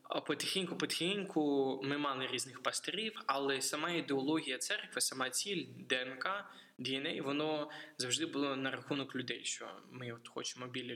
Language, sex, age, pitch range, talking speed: Ukrainian, male, 20-39, 125-140 Hz, 130 wpm